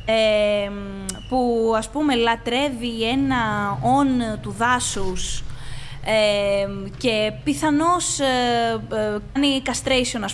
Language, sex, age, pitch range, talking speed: Greek, female, 20-39, 205-290 Hz, 95 wpm